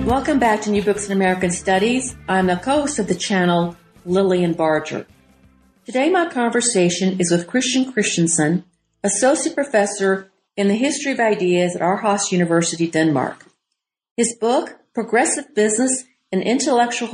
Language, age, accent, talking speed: English, 50-69, American, 140 wpm